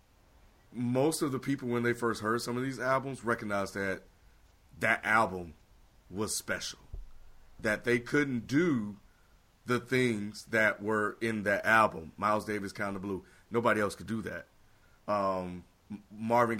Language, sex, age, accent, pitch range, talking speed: English, male, 30-49, American, 95-120 Hz, 150 wpm